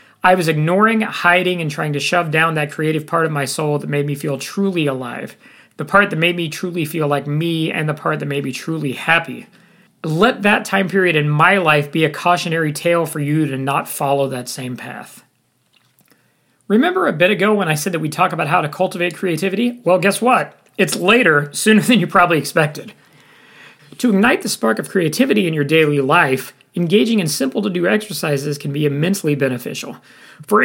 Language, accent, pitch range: English, American, 145-190 Hz